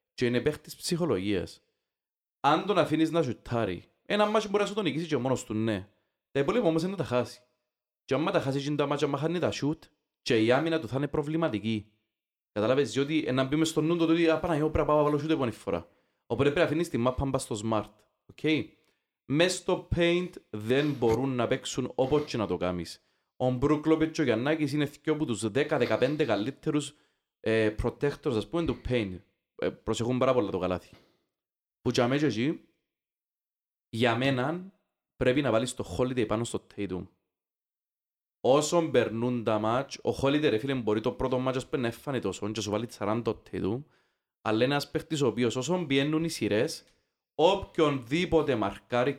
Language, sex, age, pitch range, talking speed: Greek, male, 30-49, 115-155 Hz, 110 wpm